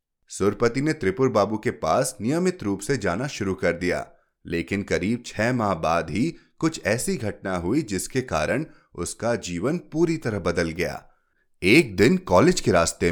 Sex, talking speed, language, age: male, 165 wpm, Hindi, 30-49